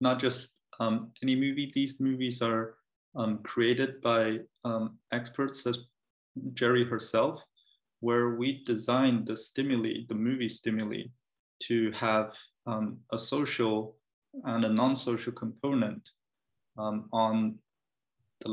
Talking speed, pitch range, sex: 115 wpm, 110-120 Hz, male